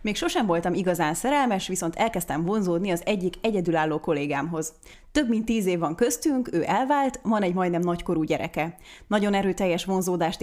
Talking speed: 160 wpm